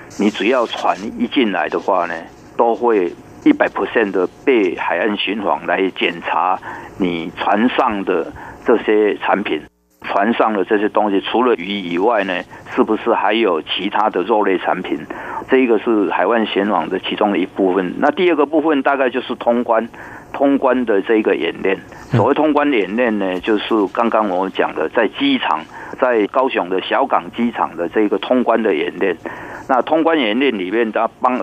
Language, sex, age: Chinese, male, 50-69